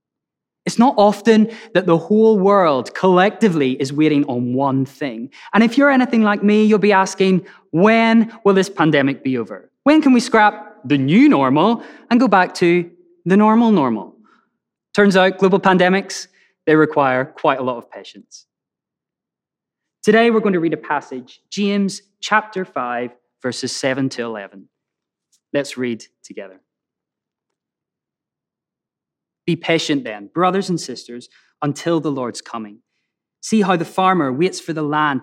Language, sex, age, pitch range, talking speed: English, male, 20-39, 135-200 Hz, 150 wpm